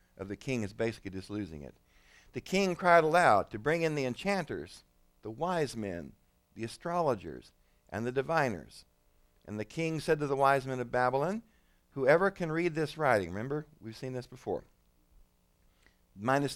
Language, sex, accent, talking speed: English, male, American, 165 wpm